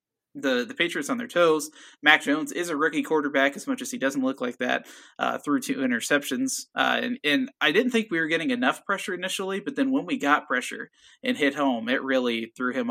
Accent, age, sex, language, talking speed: American, 20-39, male, English, 230 wpm